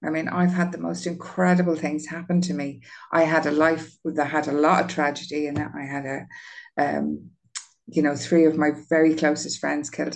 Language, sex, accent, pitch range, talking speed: English, female, Irish, 150-175 Hz, 205 wpm